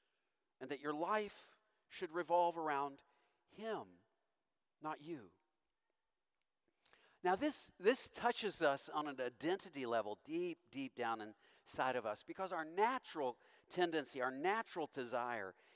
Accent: American